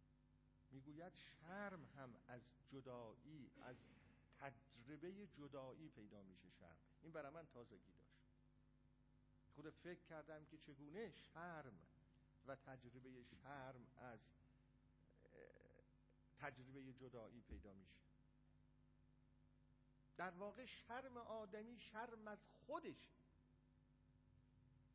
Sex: male